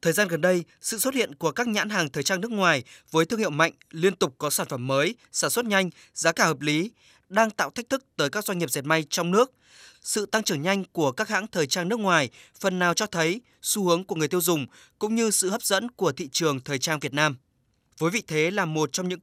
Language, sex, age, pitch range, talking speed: Vietnamese, male, 20-39, 155-200 Hz, 260 wpm